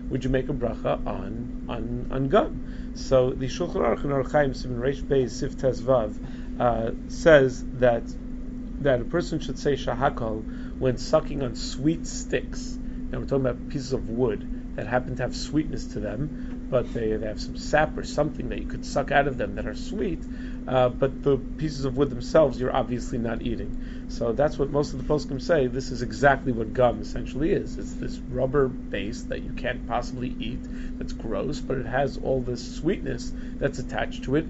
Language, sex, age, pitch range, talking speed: English, male, 40-59, 125-155 Hz, 190 wpm